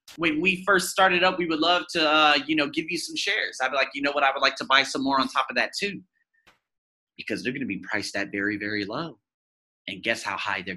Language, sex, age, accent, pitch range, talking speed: English, male, 30-49, American, 135-220 Hz, 275 wpm